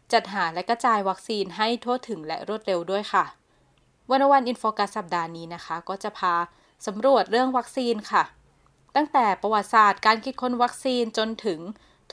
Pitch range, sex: 190-240 Hz, female